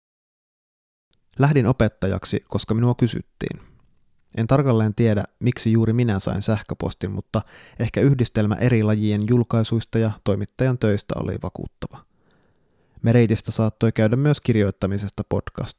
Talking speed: 115 wpm